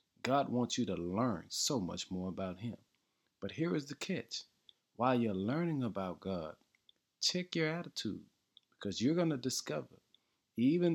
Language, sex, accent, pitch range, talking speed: English, male, American, 95-130 Hz, 160 wpm